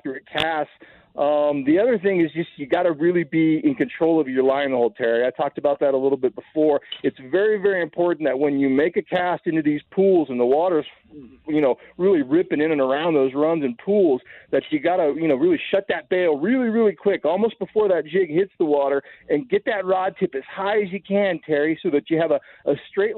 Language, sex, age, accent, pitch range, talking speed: English, male, 40-59, American, 155-200 Hz, 235 wpm